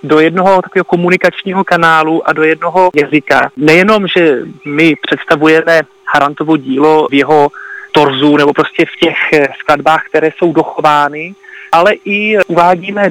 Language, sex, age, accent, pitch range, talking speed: Czech, male, 30-49, native, 155-190 Hz, 130 wpm